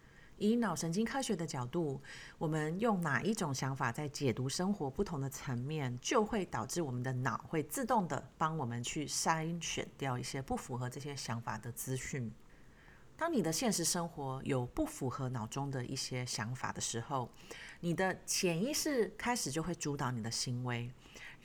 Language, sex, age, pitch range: Chinese, female, 40-59, 130-185 Hz